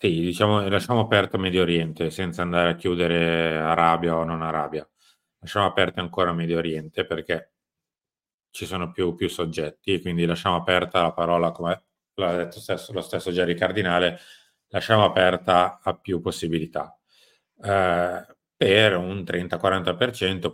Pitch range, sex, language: 85-95 Hz, male, Italian